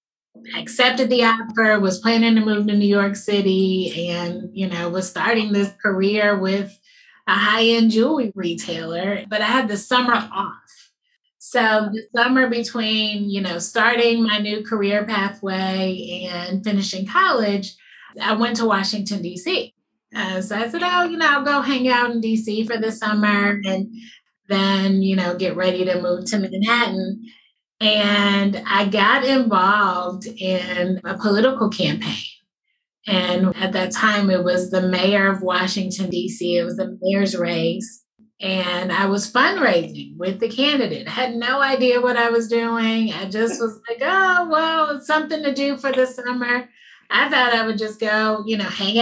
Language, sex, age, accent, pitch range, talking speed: English, female, 20-39, American, 190-235 Hz, 165 wpm